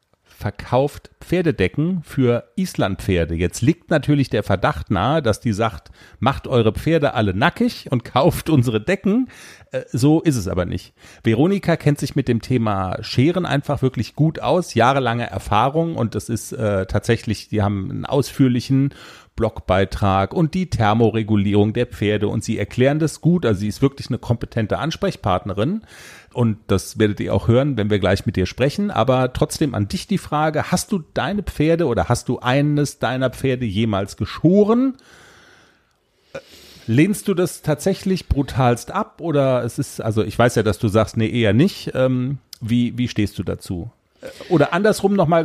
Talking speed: 165 wpm